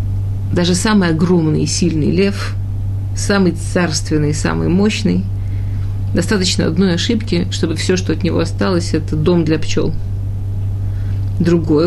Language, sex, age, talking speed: Russian, female, 40-59, 120 wpm